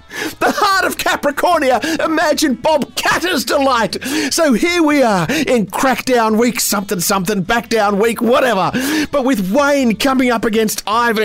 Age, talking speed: 40-59, 145 wpm